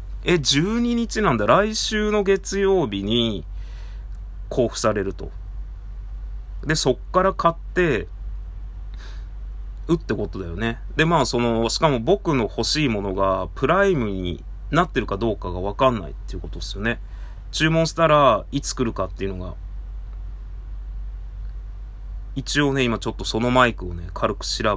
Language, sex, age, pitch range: Japanese, male, 30-49, 95-130 Hz